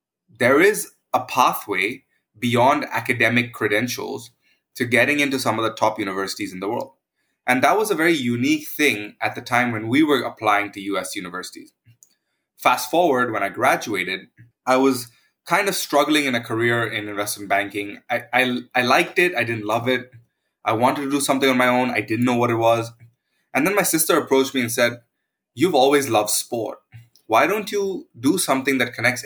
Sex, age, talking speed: male, 20-39, 190 wpm